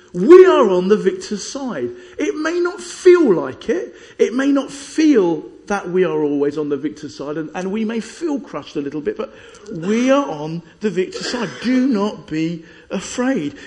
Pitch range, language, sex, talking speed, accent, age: 180-290 Hz, English, male, 195 wpm, British, 50-69